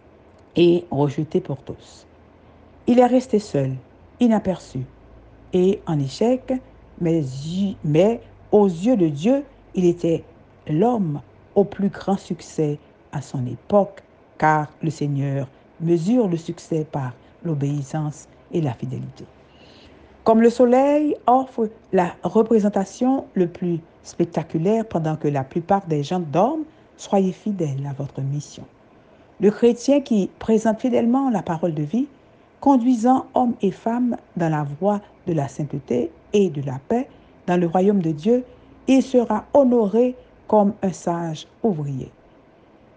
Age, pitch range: 60-79, 150-225 Hz